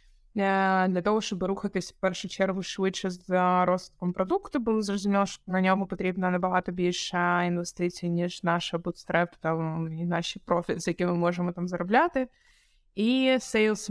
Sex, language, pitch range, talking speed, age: female, Ukrainian, 180-205 Hz, 145 wpm, 20-39